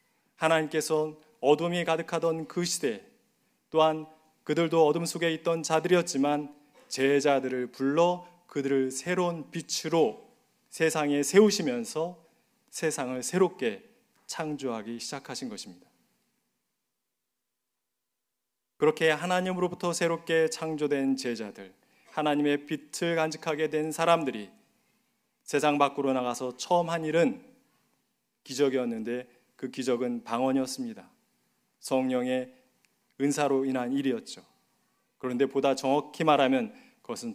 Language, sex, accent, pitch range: Korean, male, native, 130-175 Hz